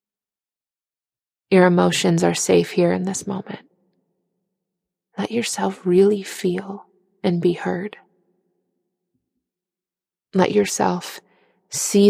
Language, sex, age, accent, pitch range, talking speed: English, female, 20-39, American, 175-195 Hz, 90 wpm